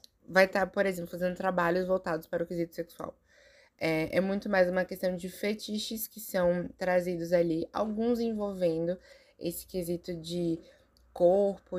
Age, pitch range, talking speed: 20-39, 170-195 Hz, 150 wpm